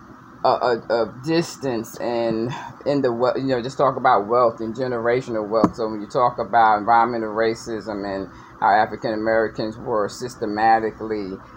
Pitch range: 110-125 Hz